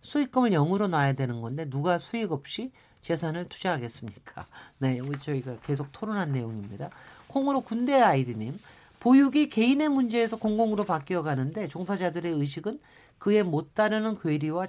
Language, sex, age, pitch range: Korean, male, 40-59, 140-215 Hz